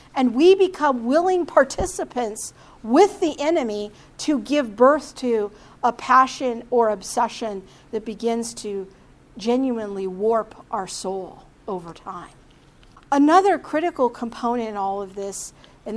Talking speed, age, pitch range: 125 wpm, 50-69, 215-275 Hz